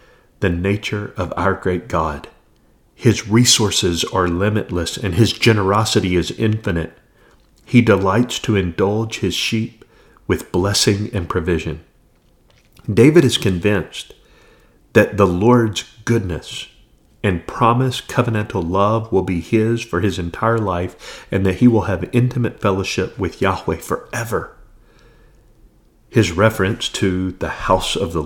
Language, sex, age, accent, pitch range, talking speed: English, male, 40-59, American, 95-120 Hz, 125 wpm